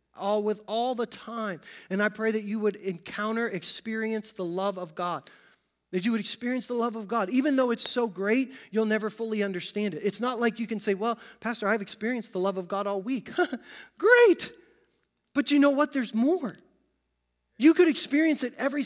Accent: American